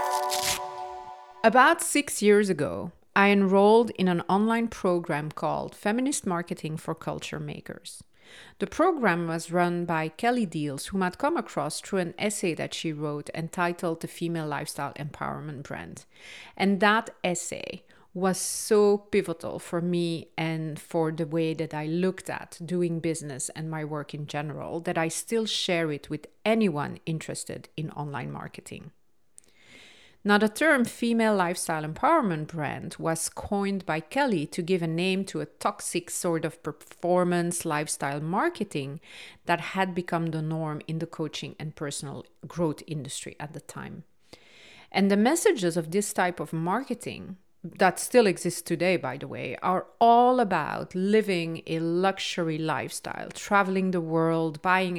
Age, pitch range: 40-59, 160-190 Hz